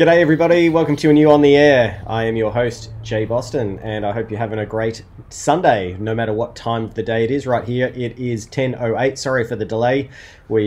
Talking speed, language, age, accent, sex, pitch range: 235 wpm, English, 20-39, Australian, male, 110-135 Hz